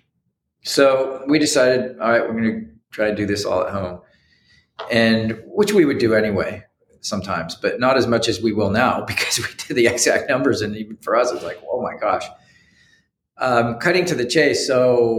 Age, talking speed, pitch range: 40-59, 200 wpm, 105-125 Hz